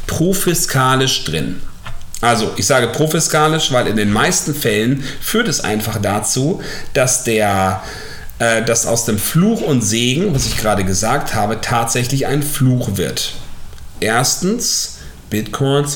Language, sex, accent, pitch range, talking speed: German, male, German, 95-135 Hz, 130 wpm